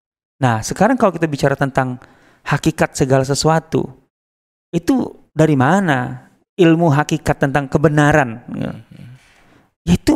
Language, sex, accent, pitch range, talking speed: Indonesian, male, native, 125-165 Hz, 105 wpm